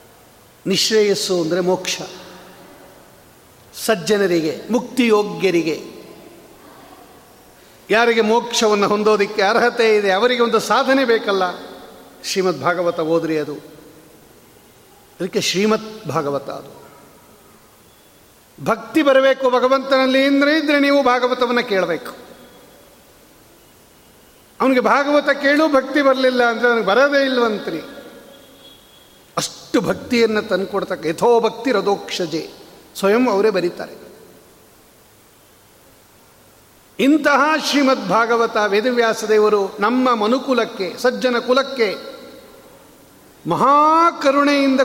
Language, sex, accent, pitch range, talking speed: Kannada, male, native, 190-260 Hz, 75 wpm